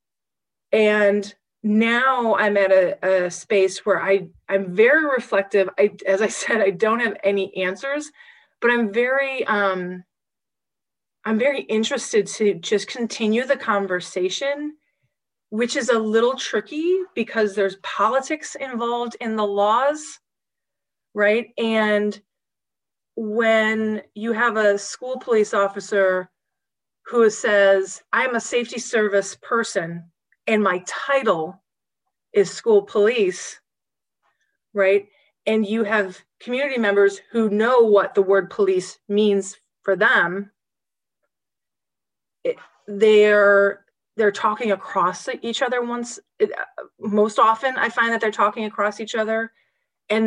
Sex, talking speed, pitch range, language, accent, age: female, 120 wpm, 200-240 Hz, English, American, 30-49